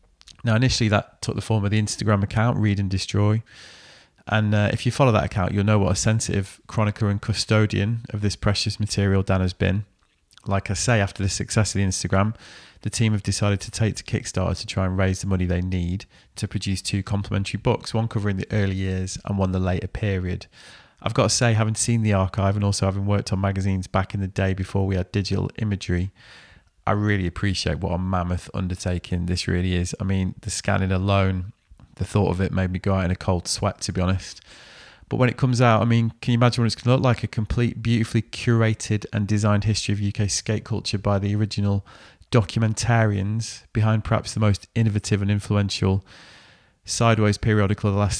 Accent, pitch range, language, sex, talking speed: British, 95-110 Hz, English, male, 215 wpm